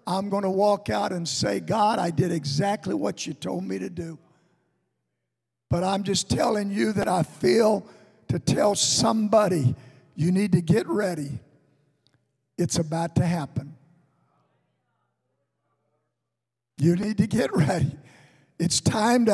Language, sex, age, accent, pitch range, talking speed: English, male, 50-69, American, 170-275 Hz, 140 wpm